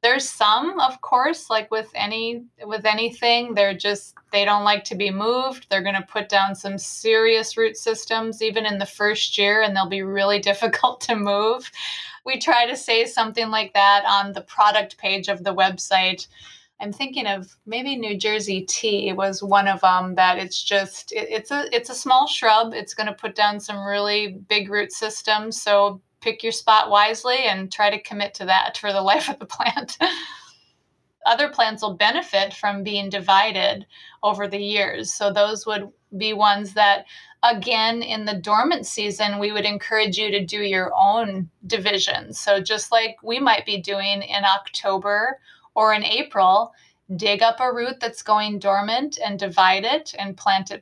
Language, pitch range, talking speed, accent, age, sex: English, 200-230 Hz, 180 wpm, American, 20-39, female